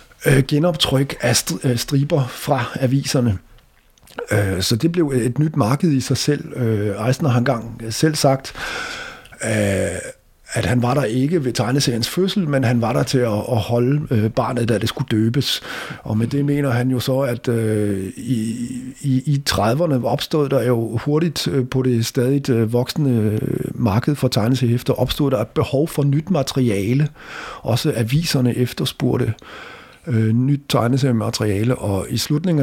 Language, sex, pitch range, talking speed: English, male, 115-145 Hz, 140 wpm